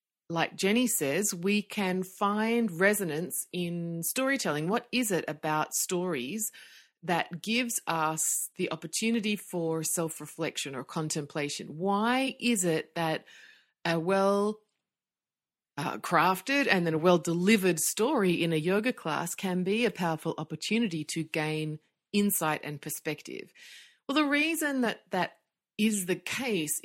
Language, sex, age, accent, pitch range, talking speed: English, female, 30-49, Australian, 160-205 Hz, 125 wpm